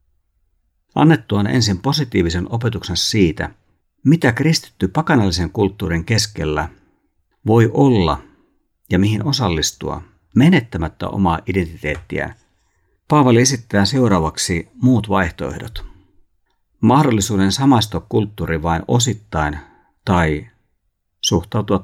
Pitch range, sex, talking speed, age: 85-115 Hz, male, 85 wpm, 50-69